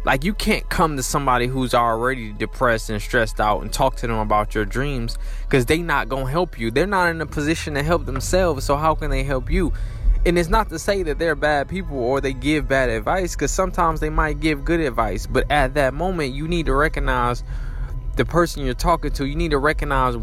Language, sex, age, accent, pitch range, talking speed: English, male, 20-39, American, 120-155 Hz, 230 wpm